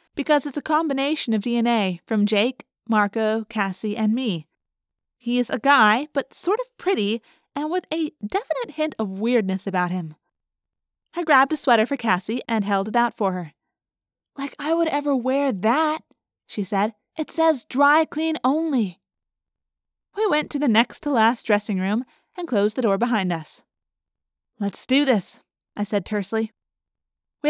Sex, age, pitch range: female, 20-39, 205-295 Hz